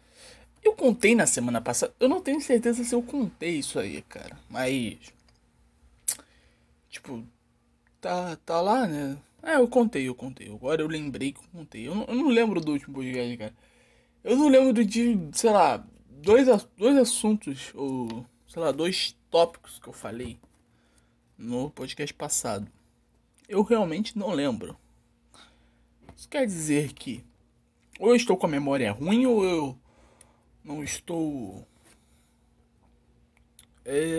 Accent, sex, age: Brazilian, male, 20-39